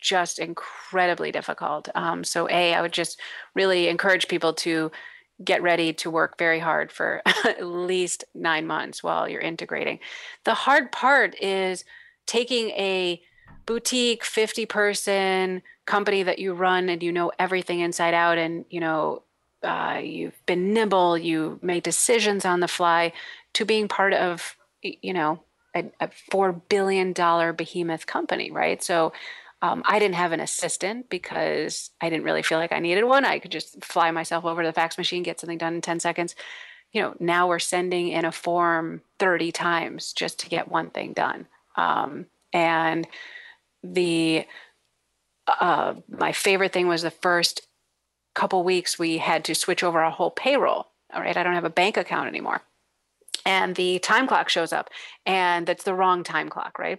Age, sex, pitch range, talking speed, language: 30-49, female, 170-195 Hz, 170 wpm, English